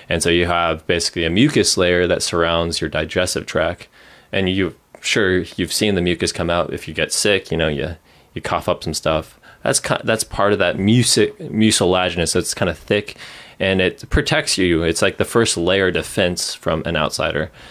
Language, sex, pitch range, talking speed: English, male, 85-105 Hz, 205 wpm